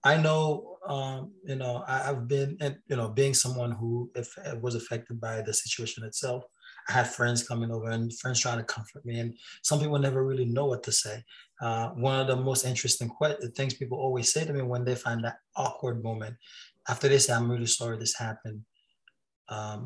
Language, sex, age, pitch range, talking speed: English, male, 20-39, 120-150 Hz, 195 wpm